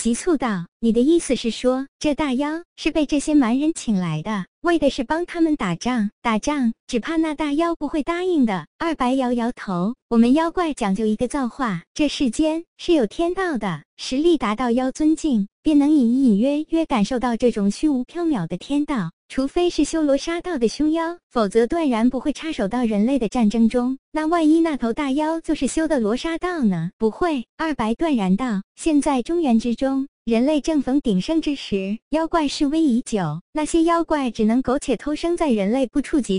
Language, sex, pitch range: Chinese, male, 230-315 Hz